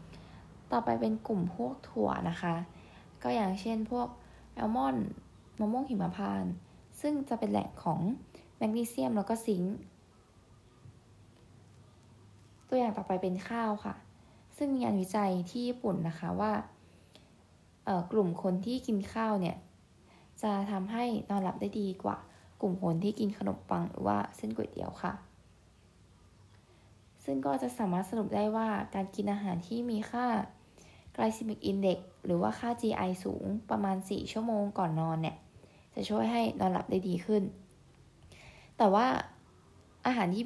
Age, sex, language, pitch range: 10-29, female, Thai, 135-220 Hz